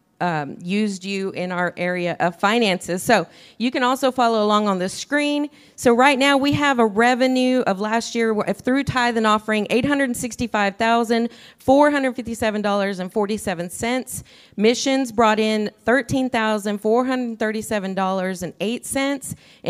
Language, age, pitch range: English, 40-59, 190-240 Hz